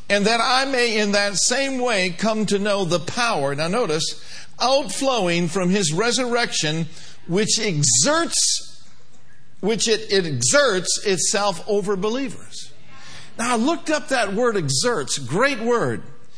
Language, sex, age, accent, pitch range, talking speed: English, male, 50-69, American, 175-245 Hz, 135 wpm